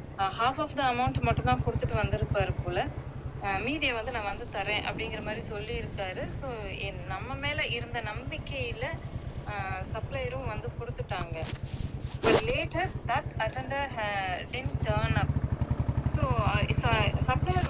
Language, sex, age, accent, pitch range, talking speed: Tamil, female, 20-39, native, 120-145 Hz, 105 wpm